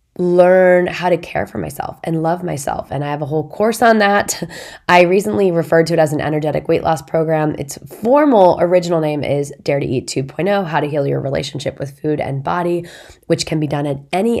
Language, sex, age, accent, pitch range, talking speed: English, female, 20-39, American, 150-180 Hz, 215 wpm